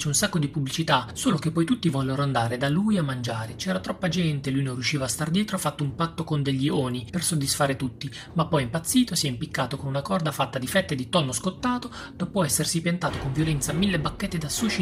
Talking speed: 230 wpm